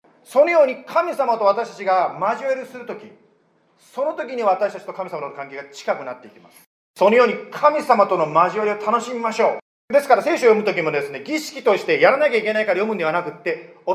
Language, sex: Japanese, male